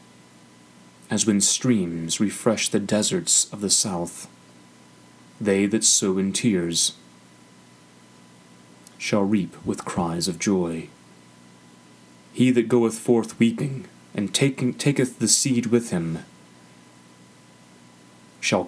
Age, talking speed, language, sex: 30-49, 105 wpm, English, male